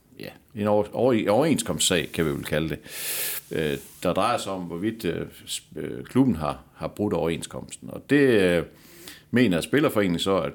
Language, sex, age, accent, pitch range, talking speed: Danish, male, 60-79, native, 85-100 Hz, 135 wpm